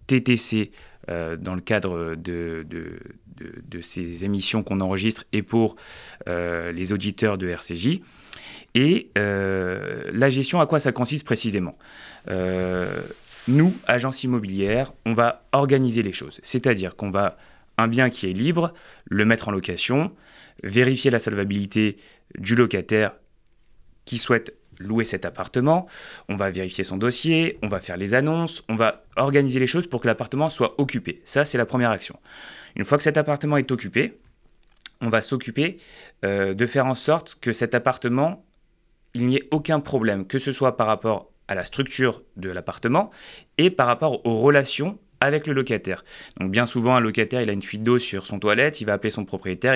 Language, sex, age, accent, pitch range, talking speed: French, male, 30-49, French, 100-130 Hz, 170 wpm